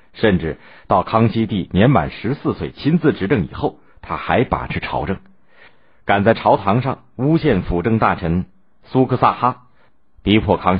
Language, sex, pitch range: Chinese, male, 85-115 Hz